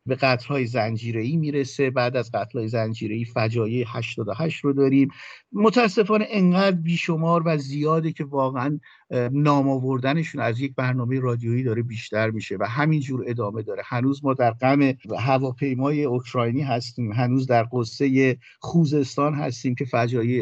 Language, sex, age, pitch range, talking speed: Persian, male, 50-69, 120-150 Hz, 130 wpm